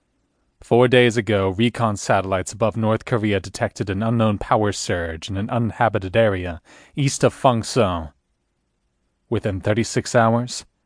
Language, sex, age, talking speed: English, male, 30-49, 125 wpm